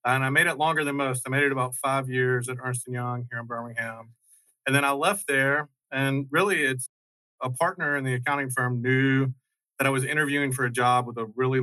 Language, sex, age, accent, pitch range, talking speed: English, male, 40-59, American, 125-140 Hz, 230 wpm